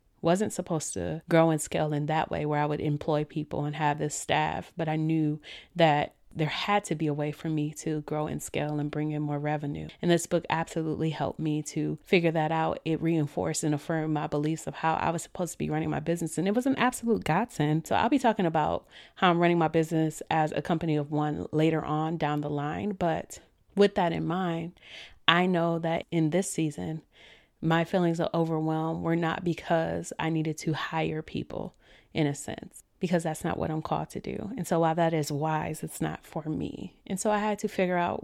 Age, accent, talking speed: 30-49, American, 225 wpm